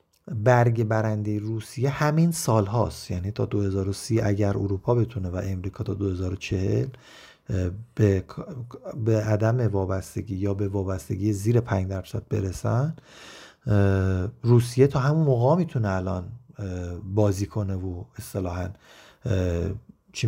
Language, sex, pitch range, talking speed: Persian, male, 105-150 Hz, 110 wpm